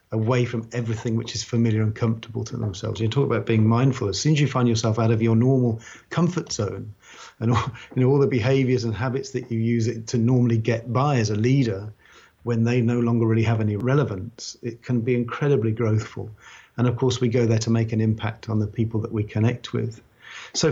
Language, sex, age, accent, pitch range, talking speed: English, male, 40-59, British, 110-130 Hz, 215 wpm